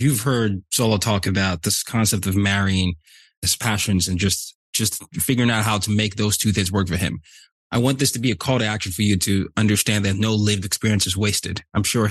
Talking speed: 230 wpm